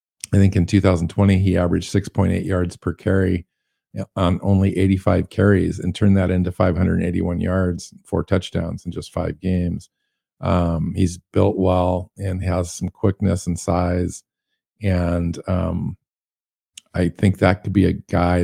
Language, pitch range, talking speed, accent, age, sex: English, 90-100 Hz, 145 wpm, American, 50-69, male